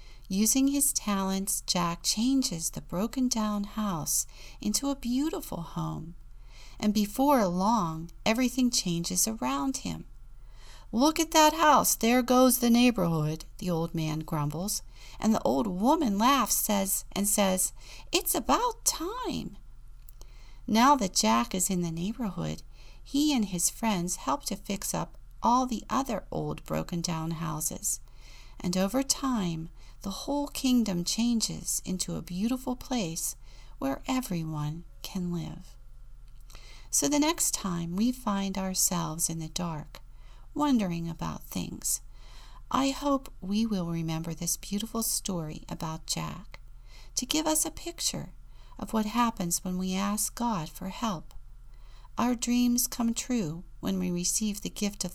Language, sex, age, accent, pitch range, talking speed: English, female, 40-59, American, 160-240 Hz, 135 wpm